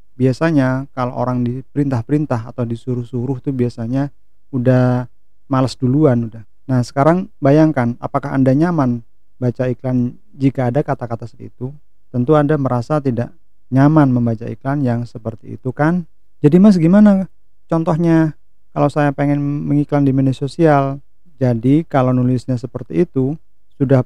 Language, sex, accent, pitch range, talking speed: Indonesian, male, native, 120-145 Hz, 130 wpm